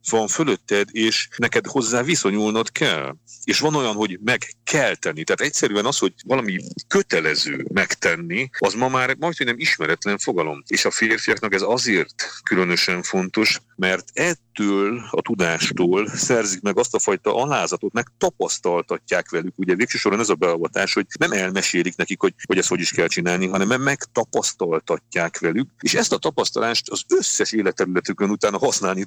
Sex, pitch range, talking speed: male, 95-115 Hz, 155 wpm